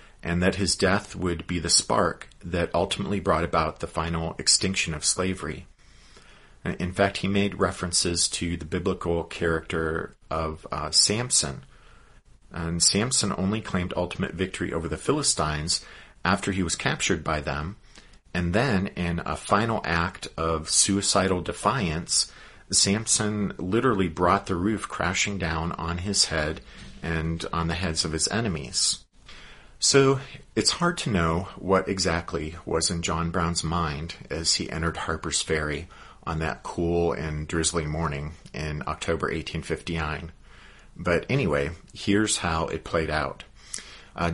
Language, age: English, 40-59